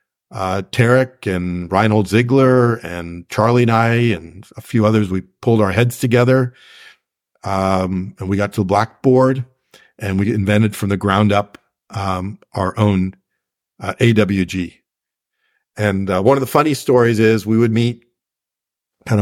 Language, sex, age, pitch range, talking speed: English, male, 50-69, 95-115 Hz, 155 wpm